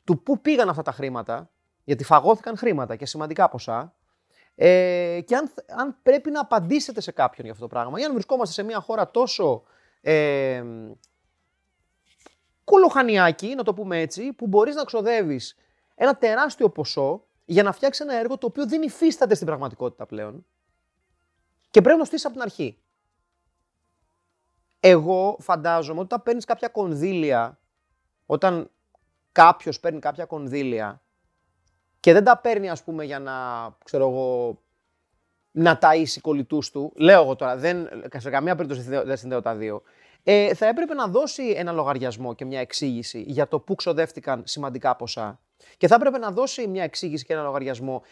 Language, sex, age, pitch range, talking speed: Greek, male, 30-49, 125-210 Hz, 155 wpm